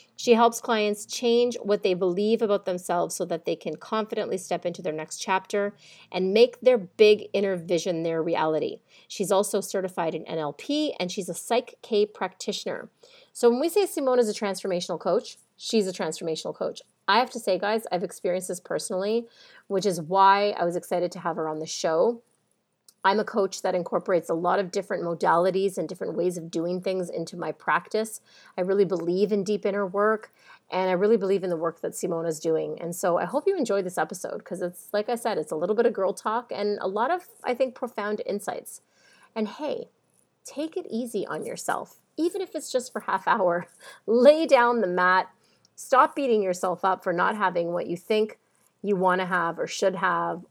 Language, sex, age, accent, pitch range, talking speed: English, female, 30-49, American, 180-230 Hz, 205 wpm